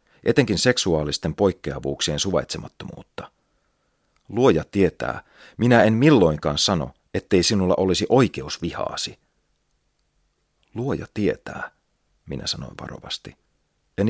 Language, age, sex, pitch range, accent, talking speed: Finnish, 40-59, male, 75-105 Hz, native, 90 wpm